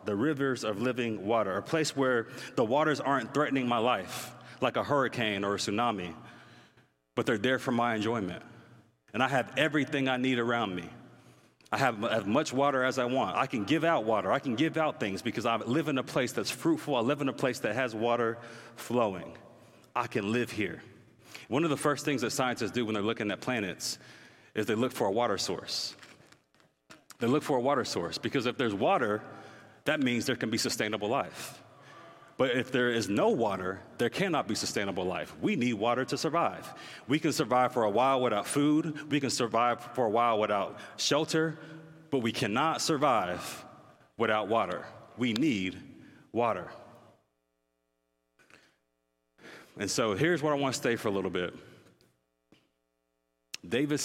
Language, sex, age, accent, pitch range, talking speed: English, male, 30-49, American, 100-135 Hz, 180 wpm